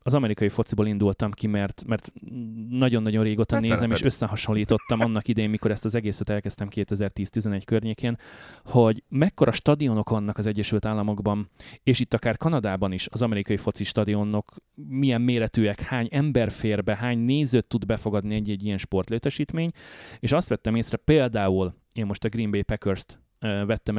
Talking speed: 155 wpm